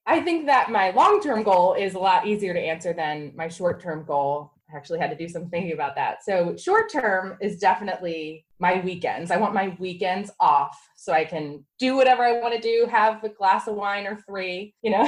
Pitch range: 160-230 Hz